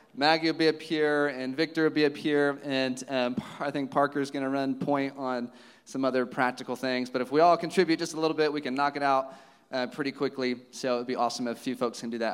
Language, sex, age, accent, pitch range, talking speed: English, male, 30-49, American, 140-175 Hz, 265 wpm